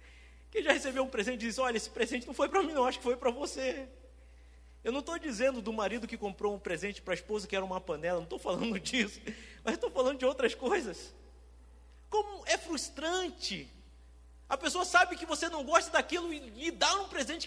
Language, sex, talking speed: Portuguese, male, 210 wpm